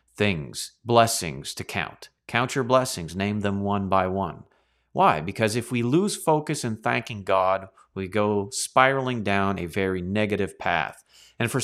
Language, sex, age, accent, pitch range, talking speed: English, male, 40-59, American, 105-165 Hz, 160 wpm